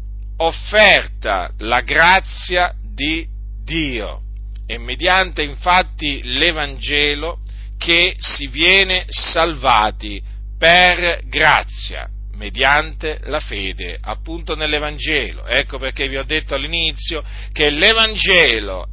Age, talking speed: 40-59, 90 wpm